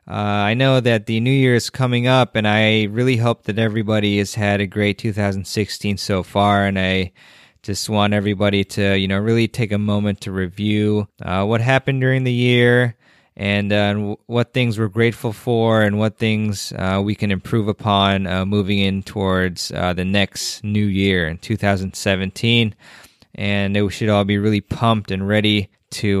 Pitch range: 100-115 Hz